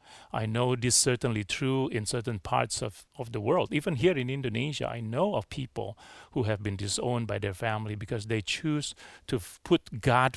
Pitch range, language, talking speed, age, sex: 110-140 Hz, English, 195 wpm, 40-59, male